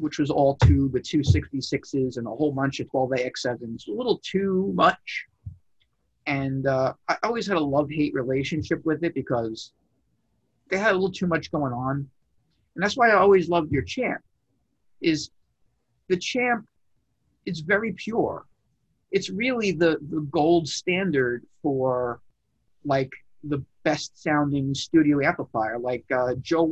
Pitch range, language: 135-180 Hz, English